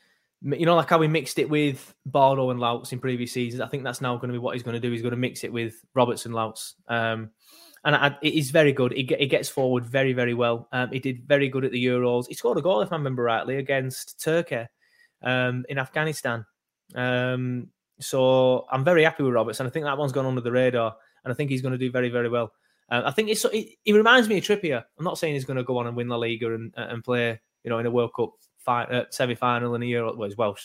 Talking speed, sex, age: 260 wpm, male, 20-39